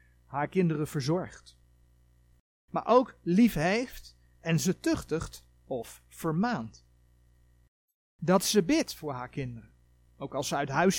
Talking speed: 120 wpm